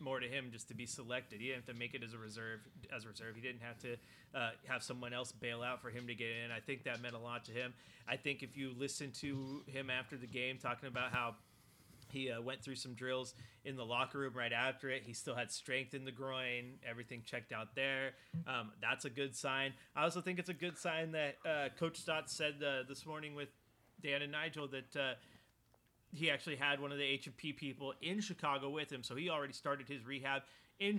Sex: male